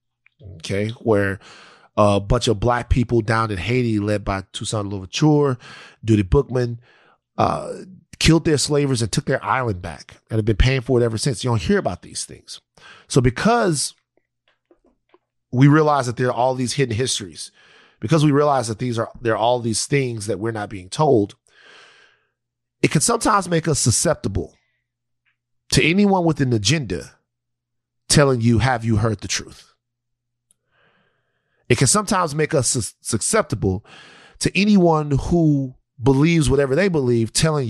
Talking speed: 155 wpm